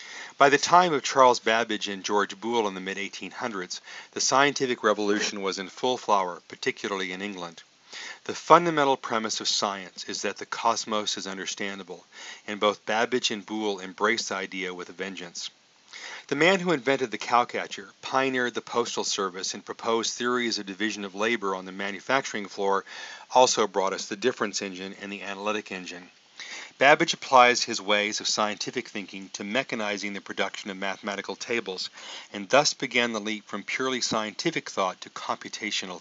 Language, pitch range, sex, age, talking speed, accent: English, 100-125 Hz, male, 40-59, 165 wpm, American